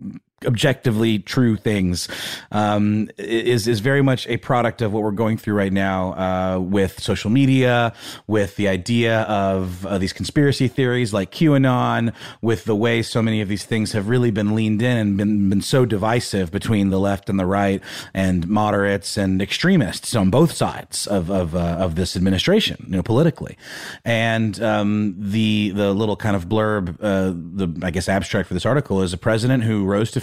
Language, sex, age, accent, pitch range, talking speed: English, male, 30-49, American, 95-120 Hz, 185 wpm